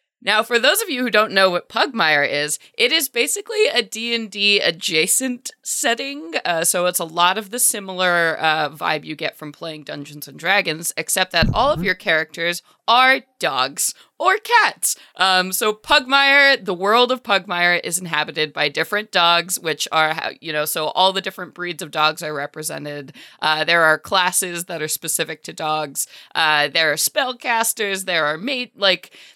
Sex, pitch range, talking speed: female, 155-215 Hz, 180 wpm